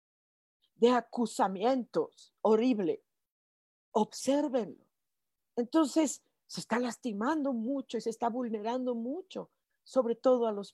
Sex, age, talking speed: female, 50-69, 95 wpm